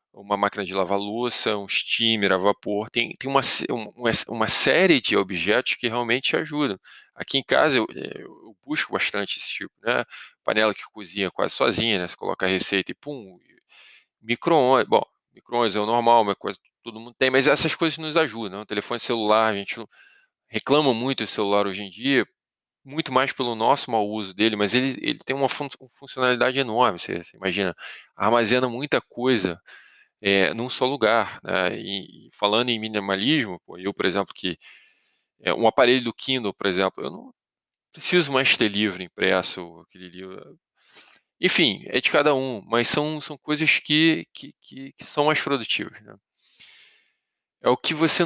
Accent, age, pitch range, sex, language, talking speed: Brazilian, 20-39, 105-140 Hz, male, Portuguese, 175 wpm